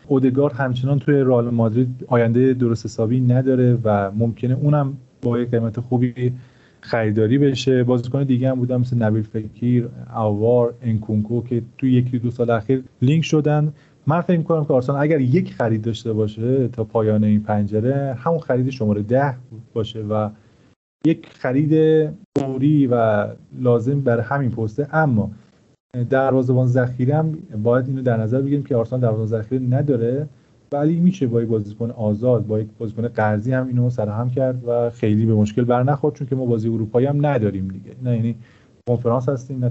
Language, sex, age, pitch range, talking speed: Persian, male, 30-49, 115-140 Hz, 165 wpm